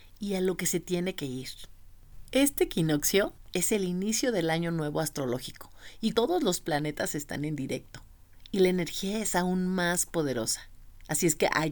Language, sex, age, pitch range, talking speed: Spanish, female, 40-59, 135-190 Hz, 180 wpm